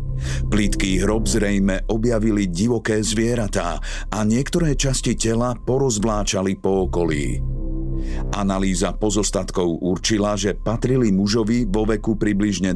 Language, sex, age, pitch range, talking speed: Slovak, male, 50-69, 85-110 Hz, 105 wpm